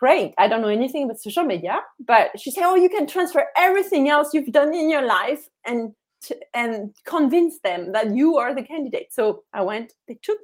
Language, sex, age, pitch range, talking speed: English, female, 30-49, 225-295 Hz, 205 wpm